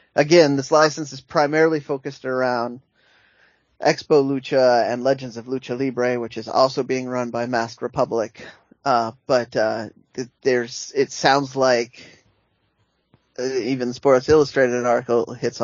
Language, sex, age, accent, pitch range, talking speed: English, male, 20-39, American, 115-135 Hz, 130 wpm